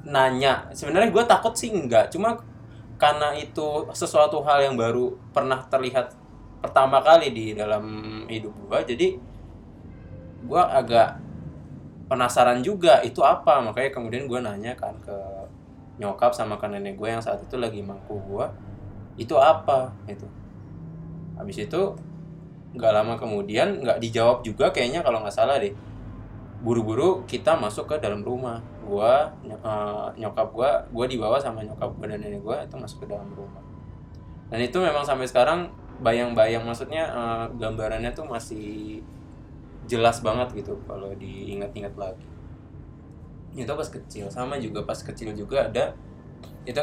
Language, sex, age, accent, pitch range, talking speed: Indonesian, male, 20-39, native, 105-135 Hz, 140 wpm